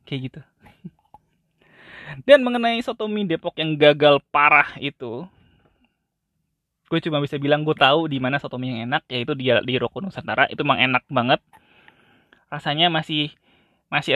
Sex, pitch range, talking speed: male, 125-165 Hz, 140 wpm